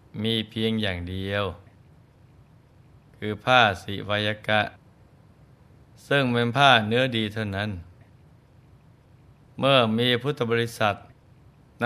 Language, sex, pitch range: Thai, male, 105-130 Hz